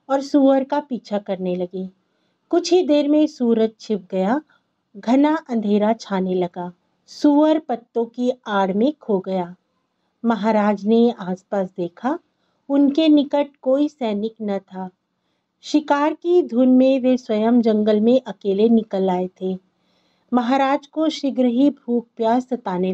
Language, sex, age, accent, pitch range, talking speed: Hindi, female, 50-69, native, 200-280 Hz, 140 wpm